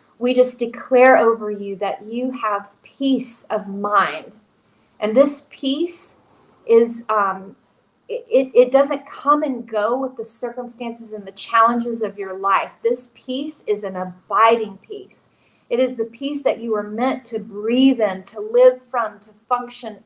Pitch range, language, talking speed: 215-260 Hz, English, 160 wpm